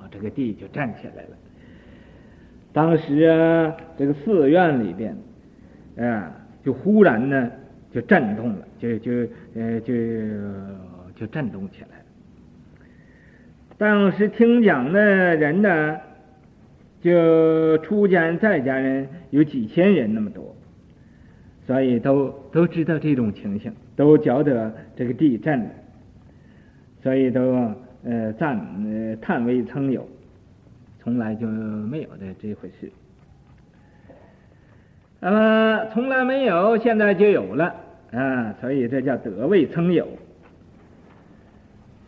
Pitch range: 120-175 Hz